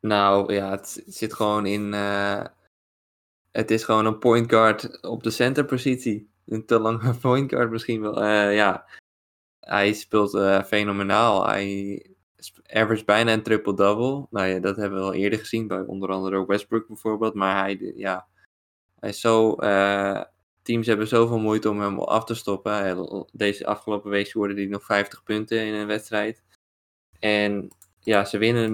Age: 20-39